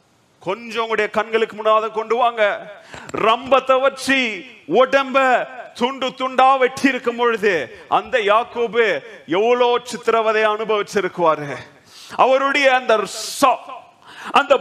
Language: Tamil